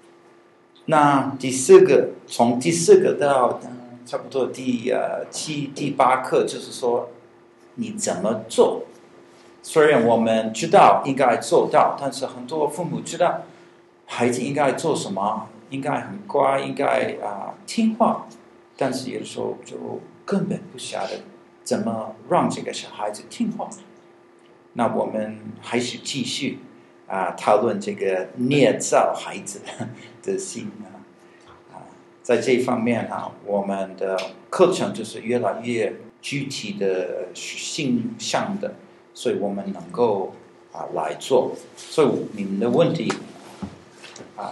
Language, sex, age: Chinese, male, 50-69